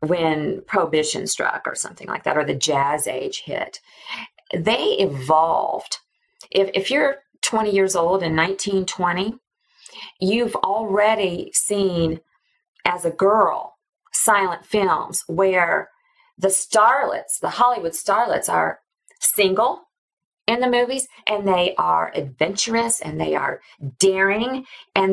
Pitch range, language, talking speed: 180-245 Hz, English, 120 wpm